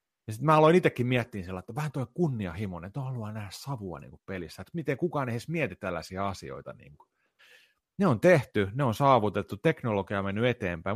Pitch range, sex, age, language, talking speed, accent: 95-125 Hz, male, 30-49, Finnish, 180 wpm, native